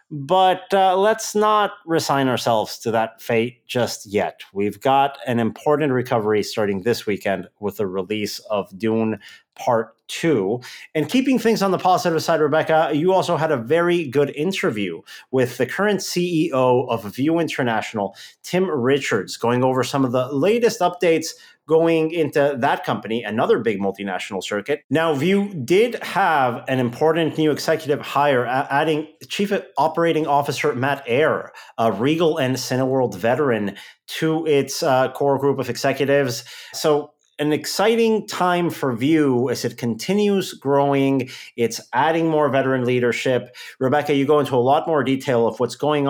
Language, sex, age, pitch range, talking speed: English, male, 30-49, 120-165 Hz, 155 wpm